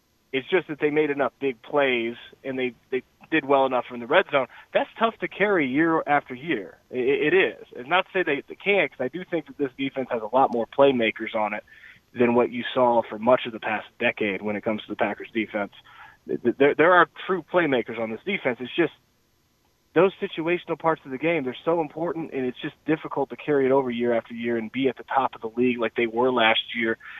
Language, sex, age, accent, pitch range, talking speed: English, male, 20-39, American, 125-155 Hz, 240 wpm